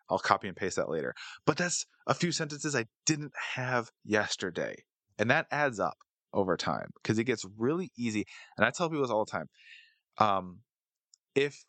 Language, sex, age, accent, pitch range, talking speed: English, male, 20-39, American, 95-125 Hz, 185 wpm